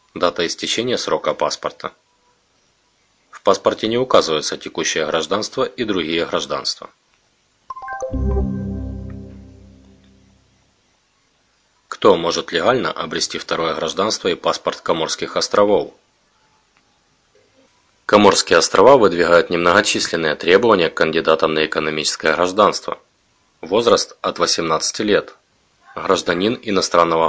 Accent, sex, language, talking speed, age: native, male, Russian, 85 wpm, 30-49